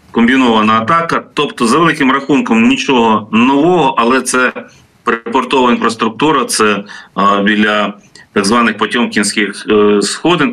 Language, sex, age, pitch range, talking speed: Ukrainian, male, 40-59, 105-135 Hz, 115 wpm